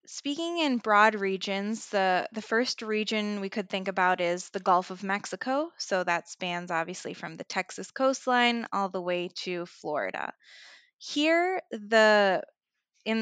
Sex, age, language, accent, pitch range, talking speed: female, 10-29, English, American, 185-230 Hz, 150 wpm